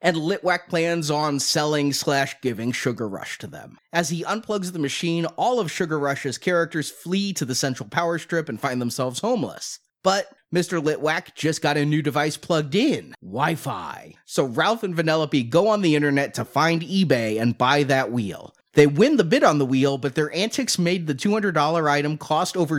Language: English